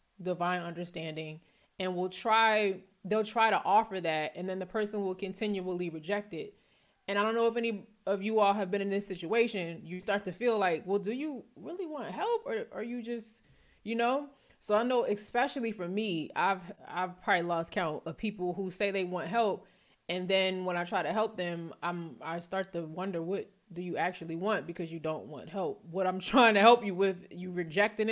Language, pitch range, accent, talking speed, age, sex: English, 180-220 Hz, American, 210 wpm, 20-39, female